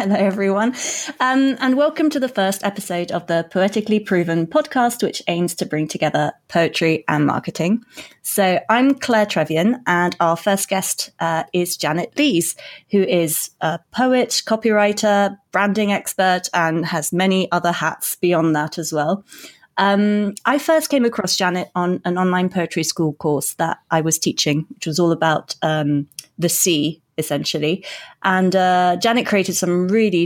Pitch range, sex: 165-205 Hz, female